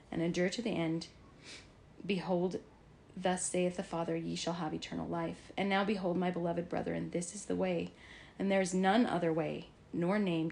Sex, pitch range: female, 165-190 Hz